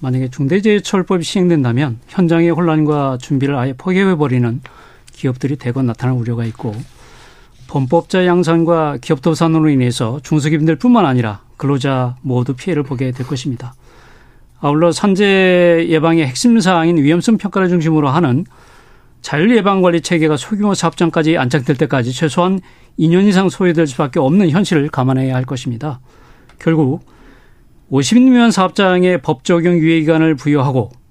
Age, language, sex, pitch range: 40-59, Korean, male, 135-180 Hz